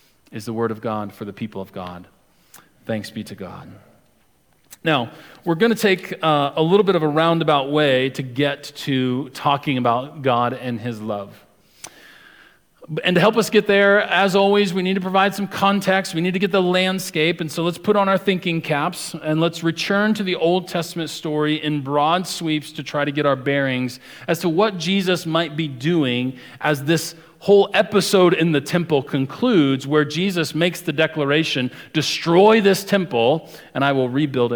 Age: 40-59